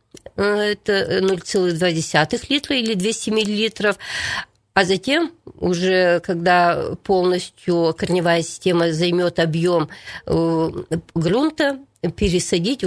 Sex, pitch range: female, 175-215 Hz